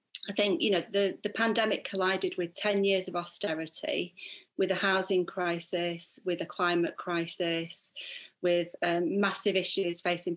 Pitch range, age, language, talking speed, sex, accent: 170-195 Hz, 30-49, English, 150 wpm, female, British